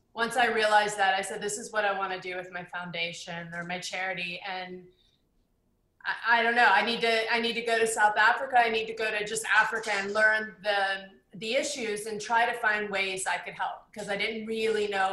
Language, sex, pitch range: English, female, 200-230 Hz